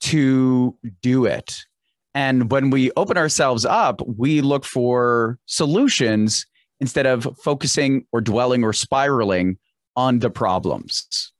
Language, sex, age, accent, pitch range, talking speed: English, male, 30-49, American, 120-150 Hz, 120 wpm